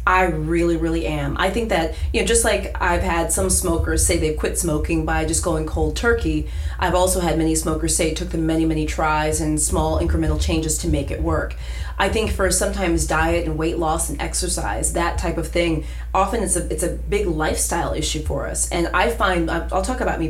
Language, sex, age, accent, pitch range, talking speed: English, female, 30-49, American, 150-180 Hz, 220 wpm